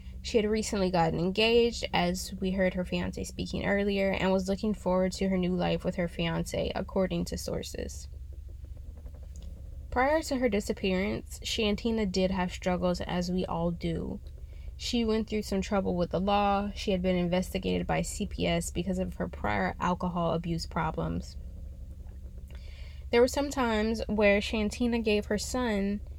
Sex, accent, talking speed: female, American, 155 wpm